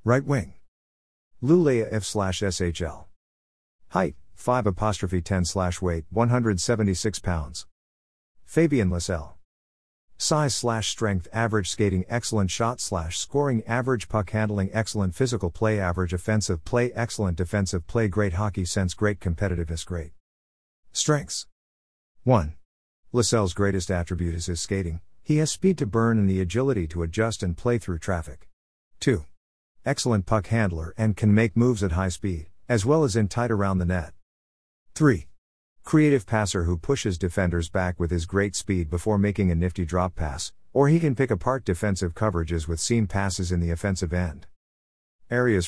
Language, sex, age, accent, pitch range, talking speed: English, male, 50-69, American, 85-110 Hz, 150 wpm